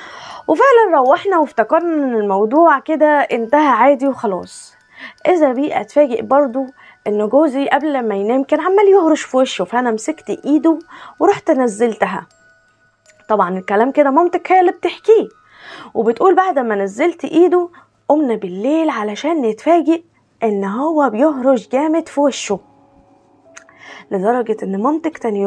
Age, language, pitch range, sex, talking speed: 20-39, Arabic, 230-340 Hz, female, 125 wpm